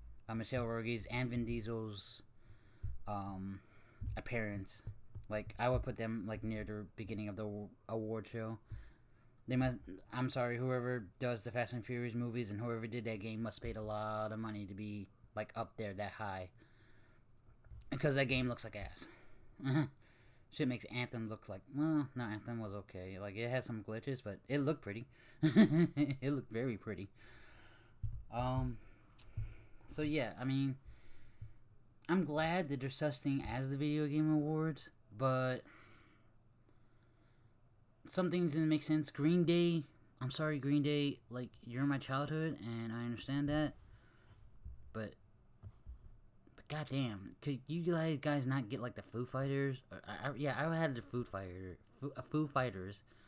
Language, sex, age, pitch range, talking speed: English, male, 30-49, 110-135 Hz, 155 wpm